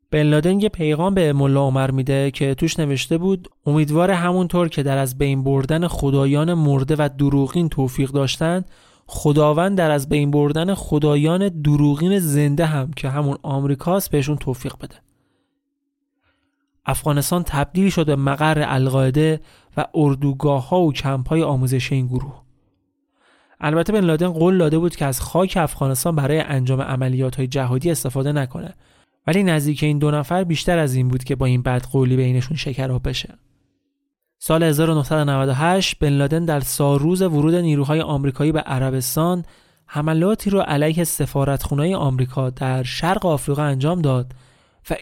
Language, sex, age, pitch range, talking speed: Persian, male, 30-49, 135-165 Hz, 145 wpm